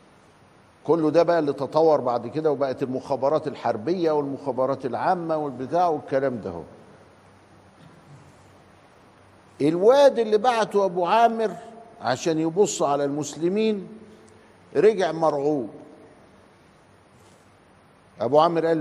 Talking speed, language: 95 wpm, Arabic